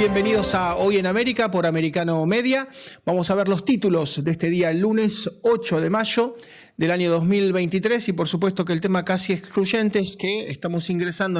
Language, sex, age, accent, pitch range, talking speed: Spanish, male, 30-49, Argentinian, 160-205 Hz, 190 wpm